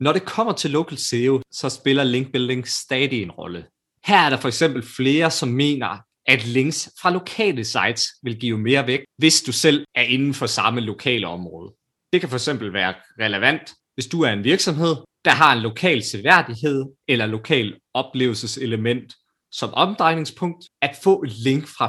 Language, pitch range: Danish, 115-155 Hz